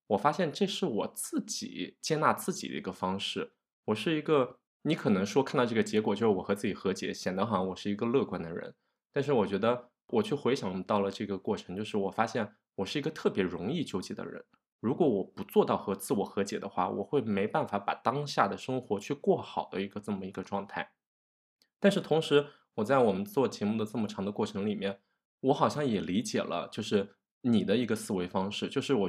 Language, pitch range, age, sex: Chinese, 95-145 Hz, 20-39, male